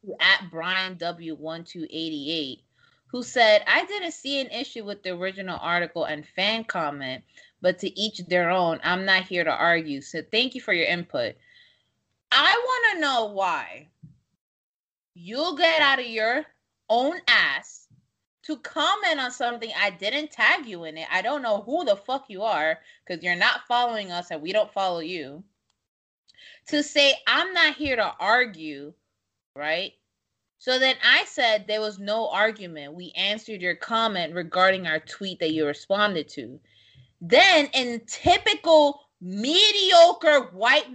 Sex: female